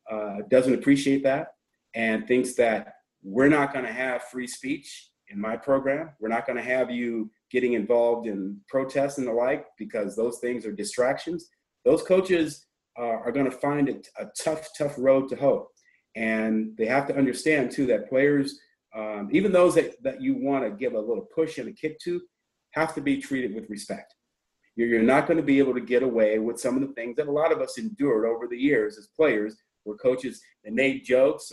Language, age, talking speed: English, 40-59, 200 wpm